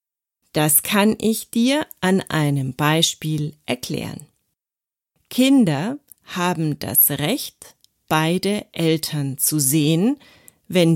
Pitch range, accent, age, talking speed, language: 145-200 Hz, German, 40-59, 95 wpm, German